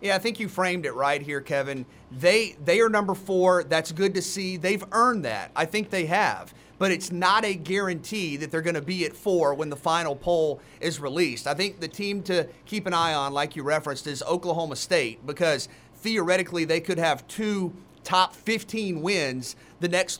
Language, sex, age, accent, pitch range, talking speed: English, male, 30-49, American, 165-195 Hz, 205 wpm